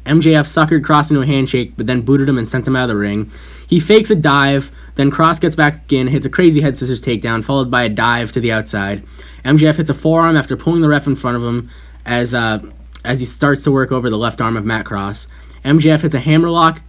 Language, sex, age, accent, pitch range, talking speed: English, male, 10-29, American, 110-155 Hz, 245 wpm